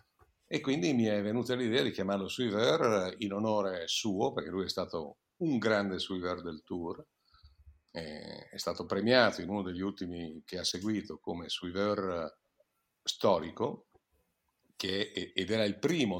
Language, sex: Italian, male